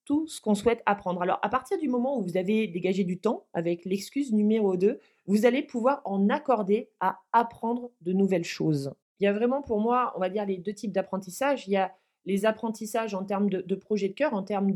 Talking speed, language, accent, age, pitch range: 230 wpm, French, French, 20-39, 180-220 Hz